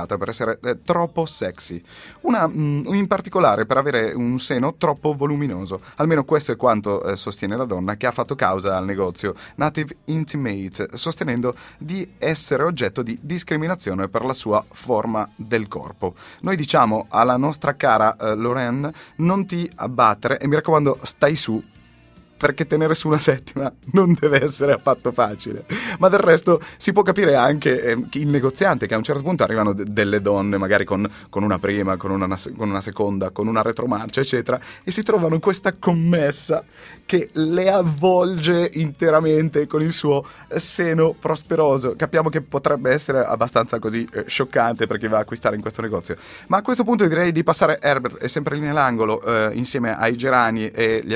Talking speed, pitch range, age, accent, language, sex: 175 wpm, 110-165 Hz, 30-49, native, Italian, male